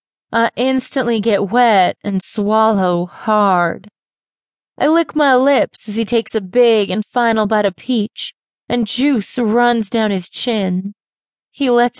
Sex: female